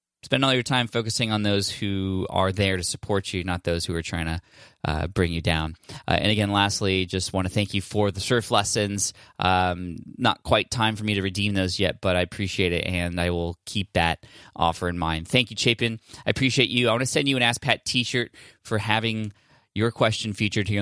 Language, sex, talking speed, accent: English, male, 230 wpm, American